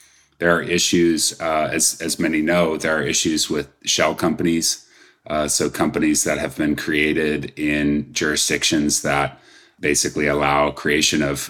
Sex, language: male, English